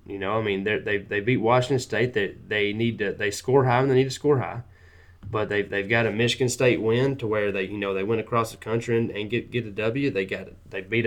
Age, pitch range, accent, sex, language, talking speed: 20-39, 100-120 Hz, American, male, English, 275 wpm